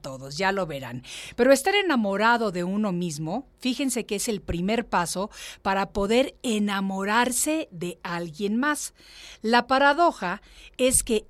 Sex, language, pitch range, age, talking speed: female, Spanish, 175-235 Hz, 50-69, 140 wpm